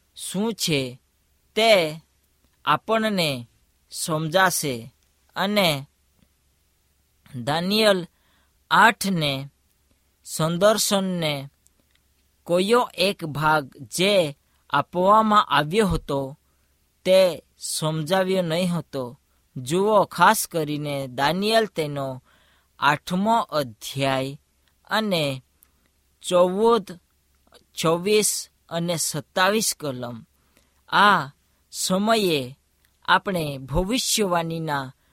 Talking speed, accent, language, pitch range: 60 wpm, native, Hindi, 125-185 Hz